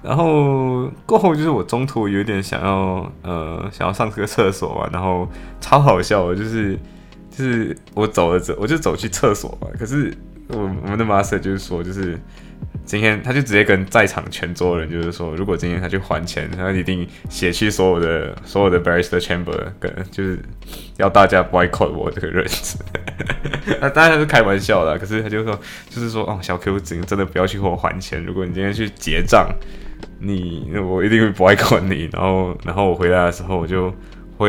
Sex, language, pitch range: male, Chinese, 90-110 Hz